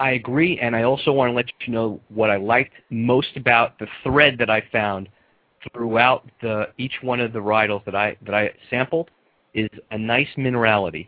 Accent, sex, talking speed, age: American, male, 195 wpm, 40-59